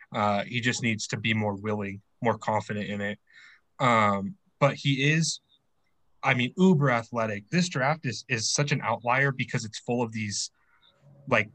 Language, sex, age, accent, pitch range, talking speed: English, male, 20-39, American, 110-145 Hz, 170 wpm